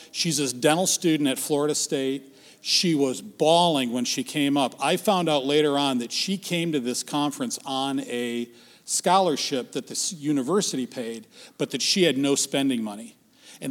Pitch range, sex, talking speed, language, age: 130-170 Hz, male, 175 wpm, English, 40-59